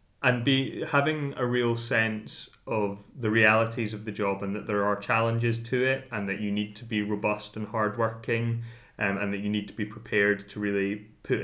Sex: male